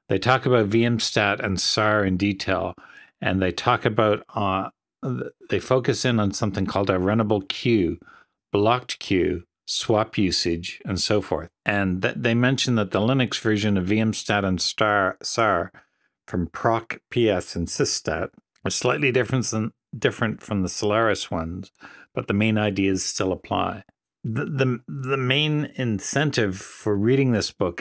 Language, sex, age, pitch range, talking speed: English, male, 60-79, 95-115 Hz, 155 wpm